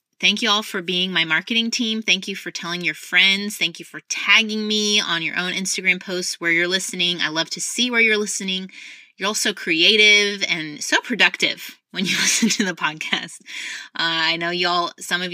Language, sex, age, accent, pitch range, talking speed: English, female, 20-39, American, 155-200 Hz, 210 wpm